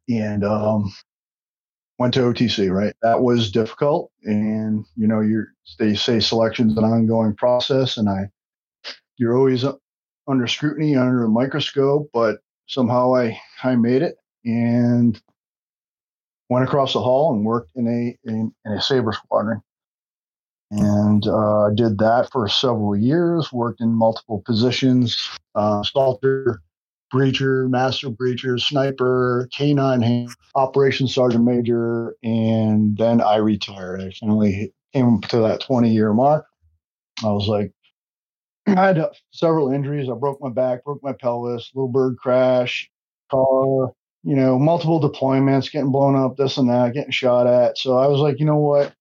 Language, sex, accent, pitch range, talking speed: English, male, American, 110-135 Hz, 145 wpm